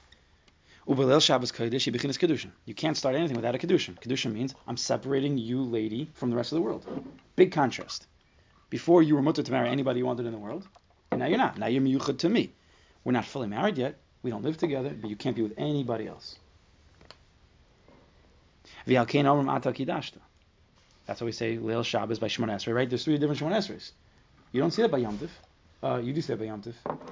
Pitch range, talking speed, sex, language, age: 100-130 Hz, 190 wpm, male, English, 30-49